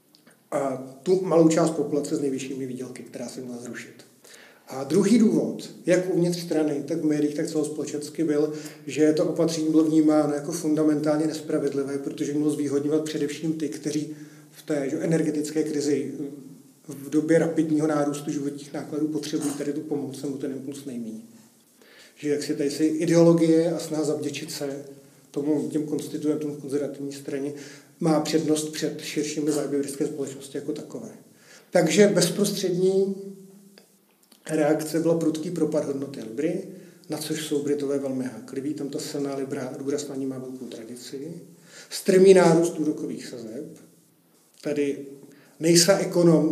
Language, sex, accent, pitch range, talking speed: Czech, male, native, 145-160 Hz, 145 wpm